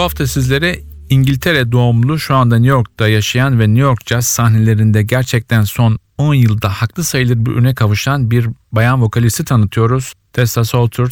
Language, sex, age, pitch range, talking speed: Turkish, male, 50-69, 100-120 Hz, 160 wpm